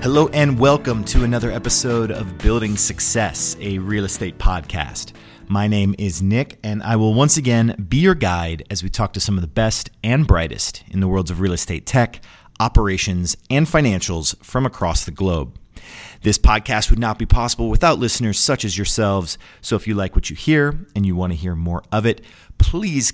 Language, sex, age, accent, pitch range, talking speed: English, male, 30-49, American, 95-125 Hz, 195 wpm